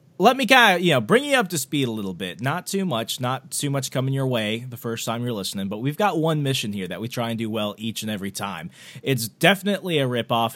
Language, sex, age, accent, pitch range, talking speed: English, male, 30-49, American, 120-175 Hz, 275 wpm